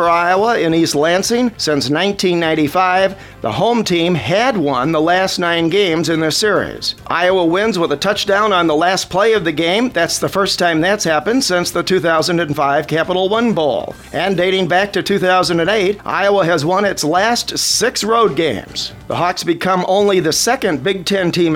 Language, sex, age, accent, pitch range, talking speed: English, male, 50-69, American, 165-200 Hz, 180 wpm